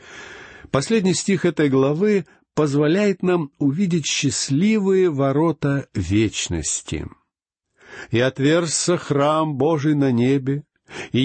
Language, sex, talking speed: Russian, male, 90 wpm